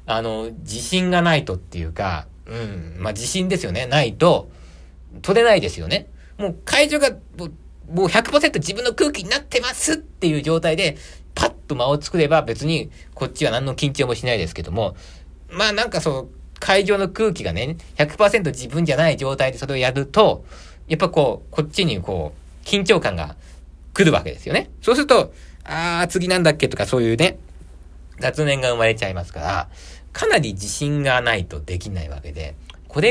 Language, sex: Japanese, male